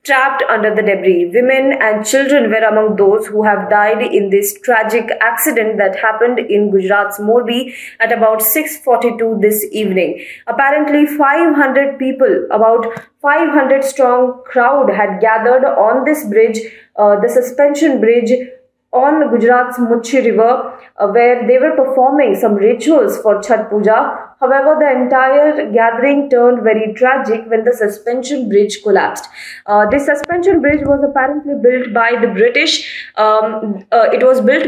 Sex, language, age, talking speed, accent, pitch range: female, English, 20-39, 145 wpm, Indian, 220-270 Hz